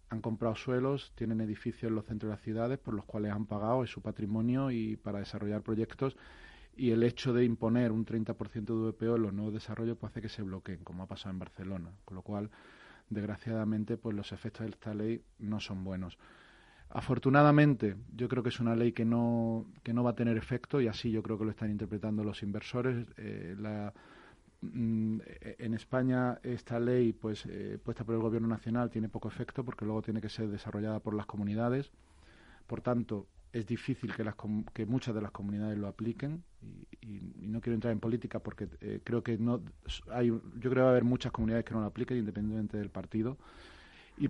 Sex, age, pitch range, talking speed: male, 30-49, 105-120 Hz, 205 wpm